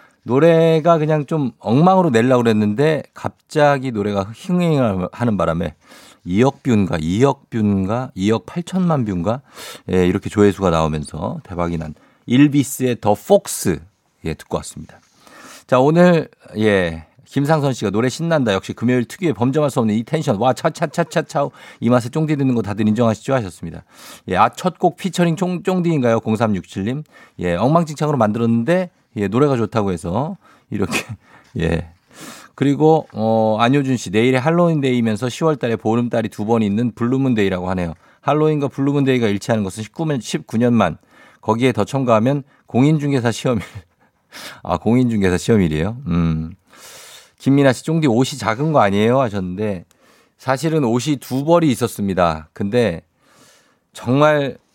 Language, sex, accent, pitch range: Korean, male, native, 105-150 Hz